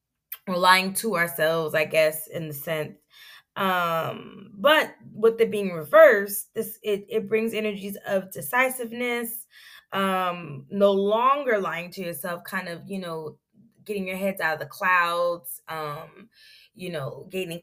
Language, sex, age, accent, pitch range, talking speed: English, female, 20-39, American, 175-215 Hz, 145 wpm